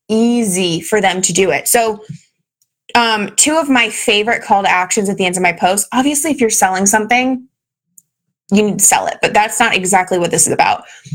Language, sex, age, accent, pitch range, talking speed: English, female, 20-39, American, 175-230 Hz, 210 wpm